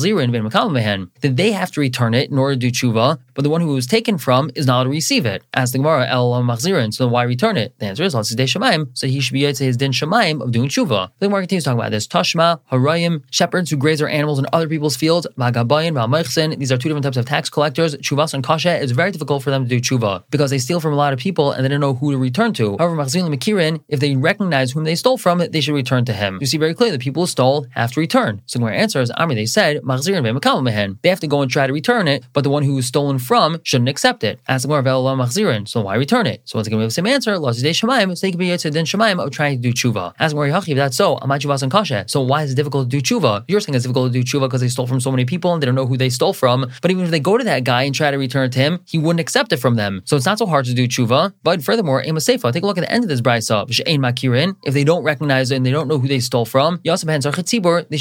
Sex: male